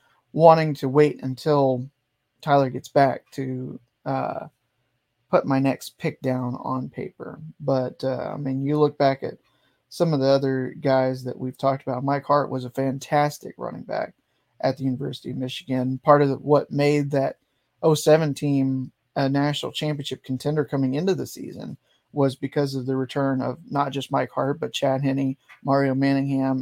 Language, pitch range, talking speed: English, 130-145 Hz, 170 wpm